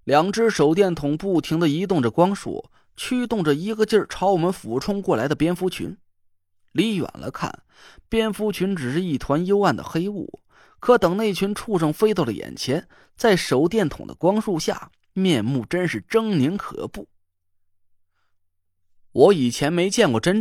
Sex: male